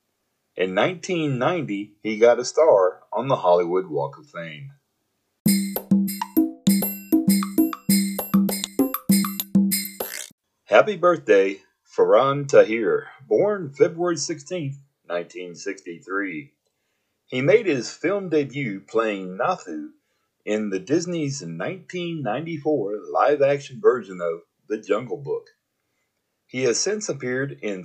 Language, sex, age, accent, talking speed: English, male, 40-59, American, 90 wpm